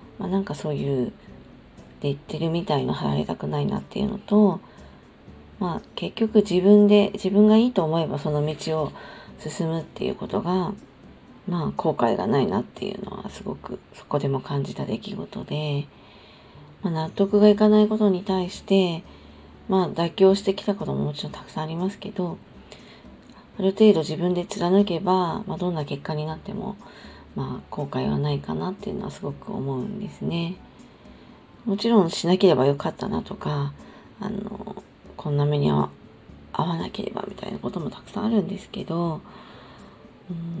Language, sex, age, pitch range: Japanese, female, 40-59, 150-205 Hz